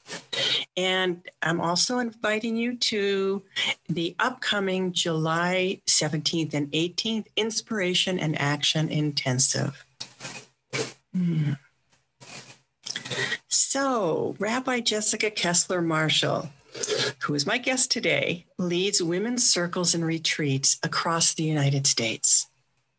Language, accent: English, American